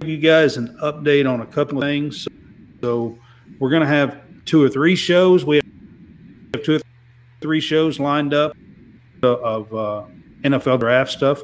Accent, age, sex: American, 50-69, male